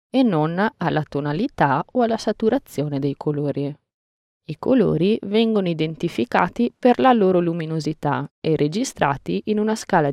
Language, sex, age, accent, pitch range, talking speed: Italian, female, 20-39, native, 150-215 Hz, 130 wpm